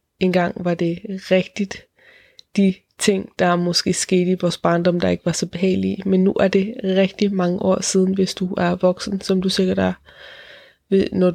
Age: 20-39